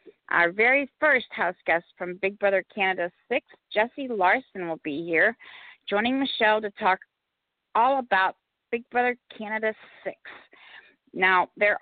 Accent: American